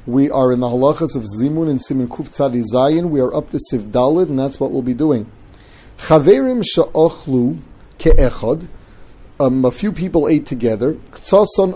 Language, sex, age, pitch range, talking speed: English, male, 40-59, 130-170 Hz, 160 wpm